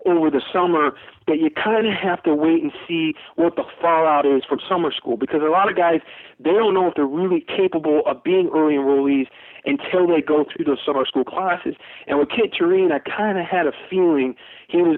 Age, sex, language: 40-59, male, English